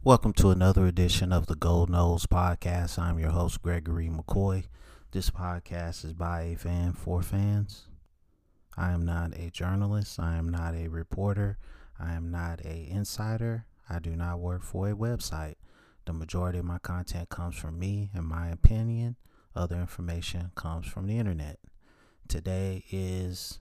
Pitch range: 85-100 Hz